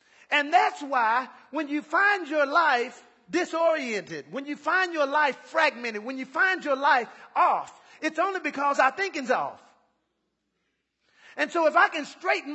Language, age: English, 40-59